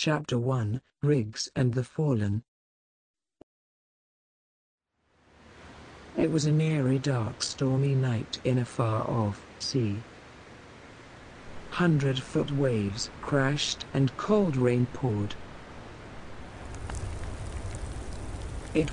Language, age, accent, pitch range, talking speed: English, 60-79, British, 90-135 Hz, 80 wpm